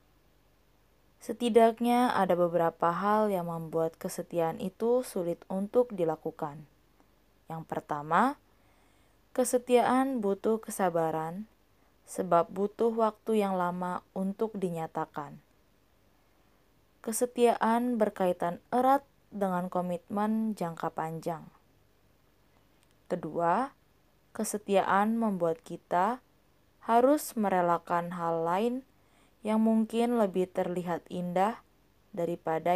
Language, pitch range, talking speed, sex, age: Indonesian, 170-220 Hz, 80 wpm, female, 20-39